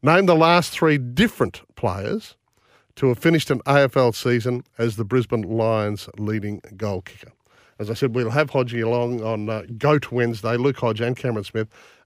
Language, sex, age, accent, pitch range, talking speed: English, male, 50-69, Australian, 115-145 Hz, 175 wpm